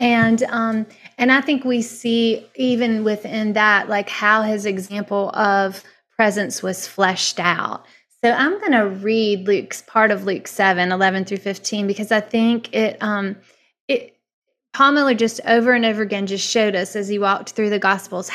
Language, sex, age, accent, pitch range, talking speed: English, female, 30-49, American, 200-230 Hz, 170 wpm